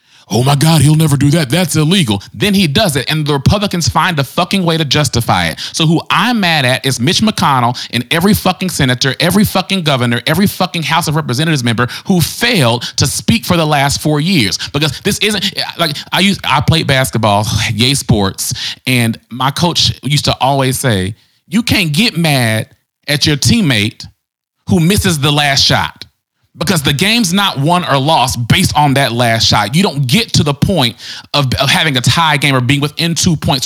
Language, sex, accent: English, male, American